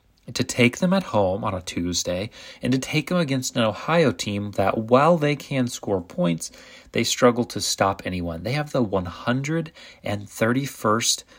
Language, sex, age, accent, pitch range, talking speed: English, male, 30-49, American, 100-130 Hz, 165 wpm